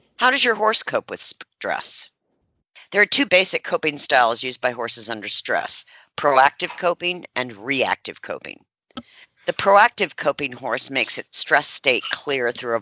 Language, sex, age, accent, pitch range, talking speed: English, female, 50-69, American, 120-165 Hz, 160 wpm